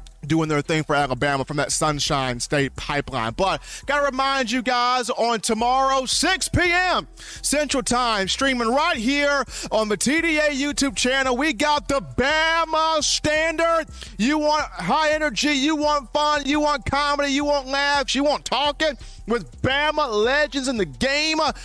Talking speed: 155 wpm